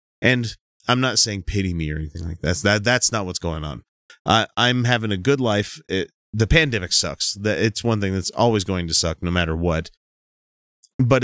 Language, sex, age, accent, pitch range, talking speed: English, male, 30-49, American, 90-130 Hz, 200 wpm